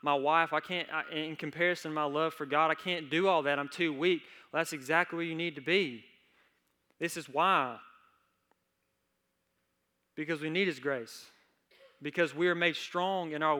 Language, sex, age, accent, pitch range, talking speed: English, male, 20-39, American, 145-175 Hz, 175 wpm